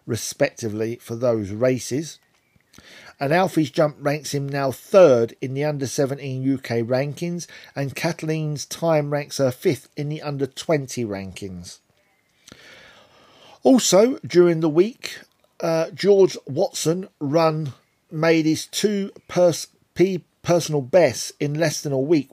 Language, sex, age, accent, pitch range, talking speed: English, male, 40-59, British, 135-170 Hz, 120 wpm